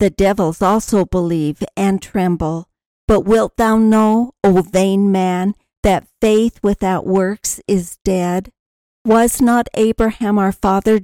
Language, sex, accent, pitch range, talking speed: English, female, American, 190-225 Hz, 130 wpm